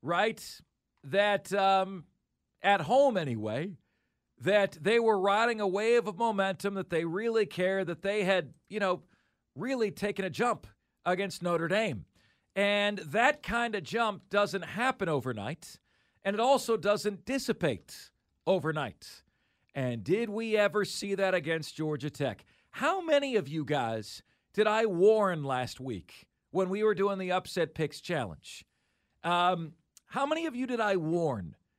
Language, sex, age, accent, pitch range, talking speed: English, male, 40-59, American, 160-210 Hz, 150 wpm